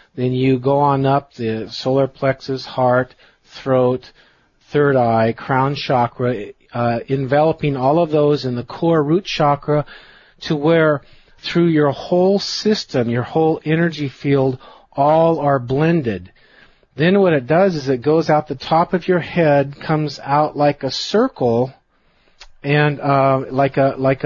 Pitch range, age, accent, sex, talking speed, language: 135-165 Hz, 40-59, American, male, 150 wpm, English